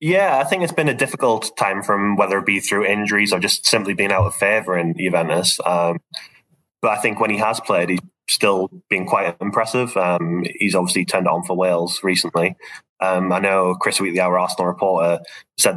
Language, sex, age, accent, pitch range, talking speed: English, male, 10-29, British, 90-100 Hz, 200 wpm